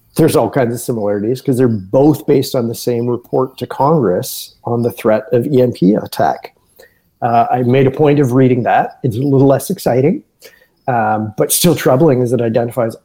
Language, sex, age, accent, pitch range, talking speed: English, male, 30-49, American, 115-145 Hz, 190 wpm